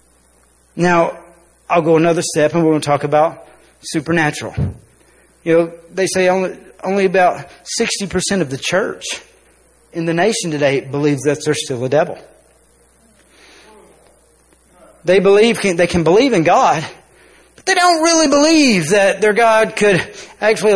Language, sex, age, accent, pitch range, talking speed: English, male, 40-59, American, 165-215 Hz, 145 wpm